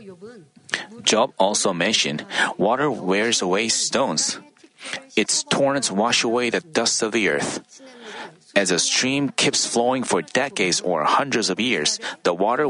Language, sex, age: Korean, male, 30-49